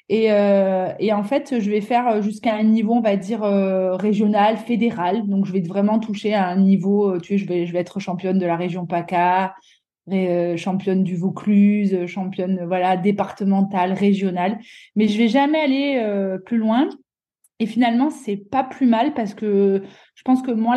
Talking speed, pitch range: 195 wpm, 185-225 Hz